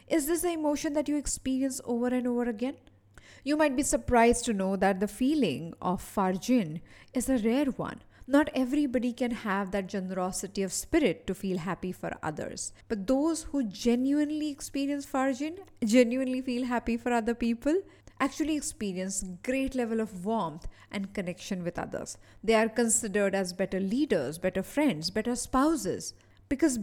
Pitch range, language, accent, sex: 195-275 Hz, English, Indian, female